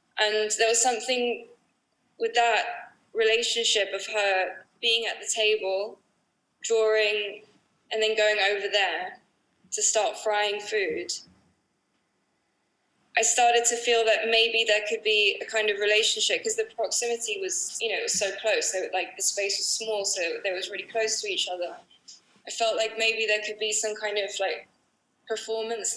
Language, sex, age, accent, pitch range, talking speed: English, female, 10-29, British, 205-245 Hz, 165 wpm